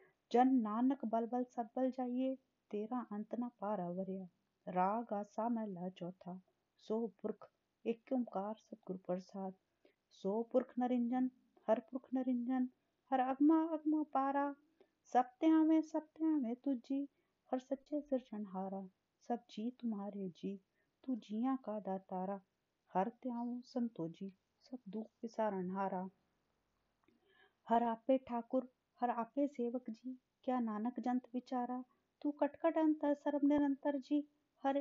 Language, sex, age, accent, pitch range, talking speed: Hindi, female, 30-49, native, 220-285 Hz, 80 wpm